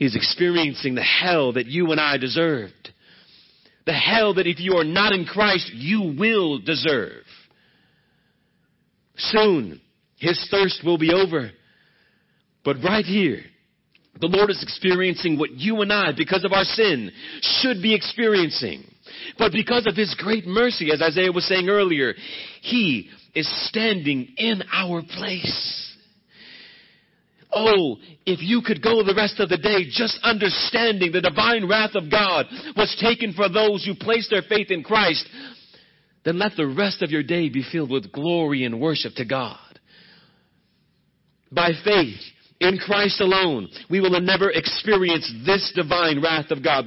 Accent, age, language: American, 40-59, English